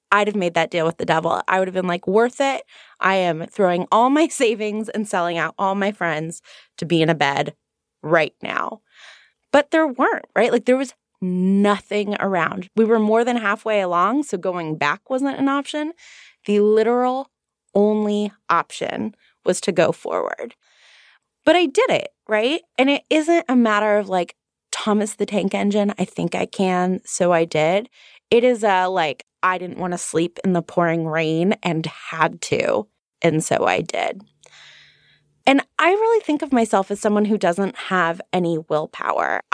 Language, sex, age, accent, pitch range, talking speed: English, female, 20-39, American, 175-230 Hz, 180 wpm